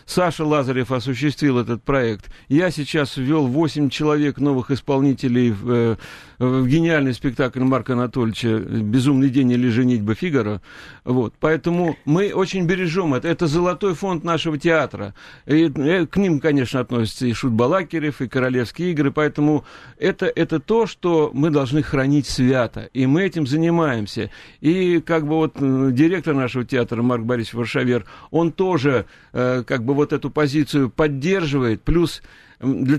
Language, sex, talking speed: Russian, male, 140 wpm